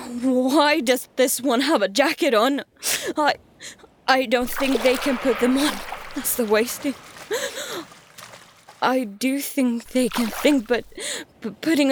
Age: 20-39